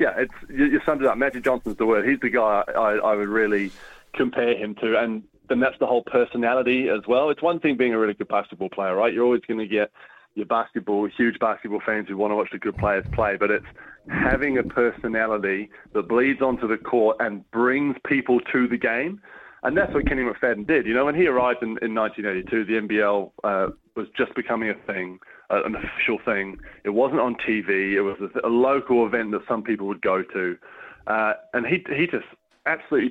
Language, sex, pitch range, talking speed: English, male, 110-145 Hz, 215 wpm